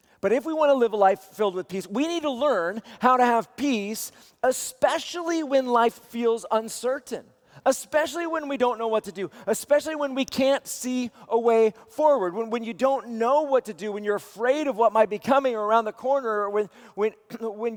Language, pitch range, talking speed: English, 215-265 Hz, 210 wpm